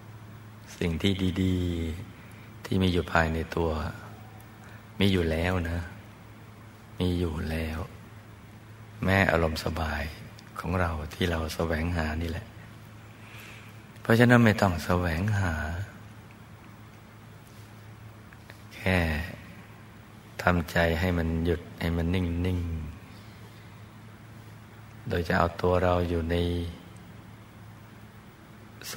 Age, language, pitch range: 60-79, Thai, 85-110 Hz